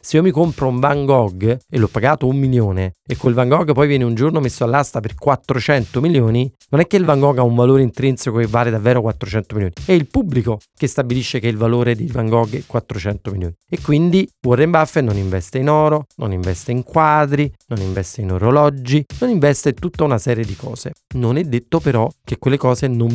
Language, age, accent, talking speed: Italian, 30-49, native, 225 wpm